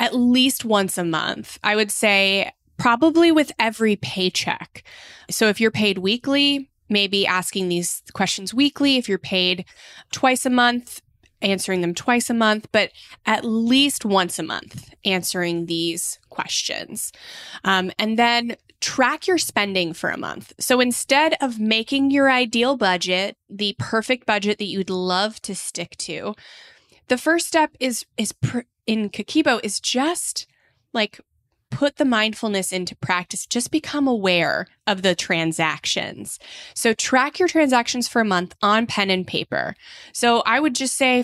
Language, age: English, 20-39